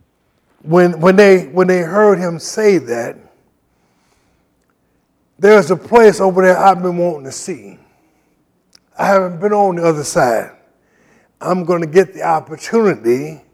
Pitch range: 165-200 Hz